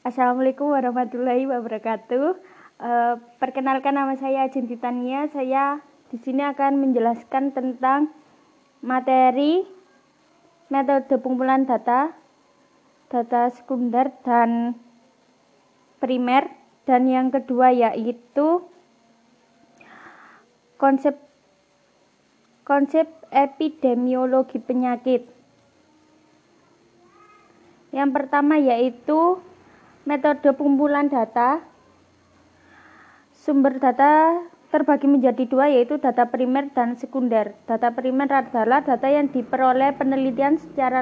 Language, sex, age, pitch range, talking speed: Indonesian, female, 20-39, 250-280 Hz, 80 wpm